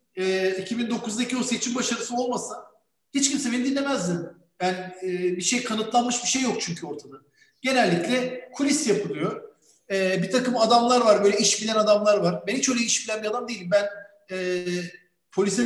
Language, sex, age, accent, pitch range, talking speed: Turkish, male, 50-69, native, 195-245 Hz, 155 wpm